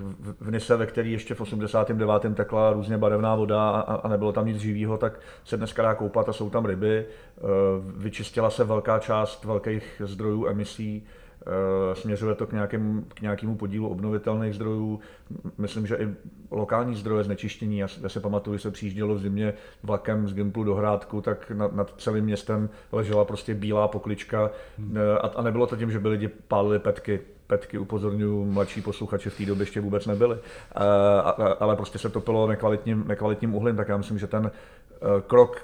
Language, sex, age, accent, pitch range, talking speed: Czech, male, 40-59, native, 100-110 Hz, 170 wpm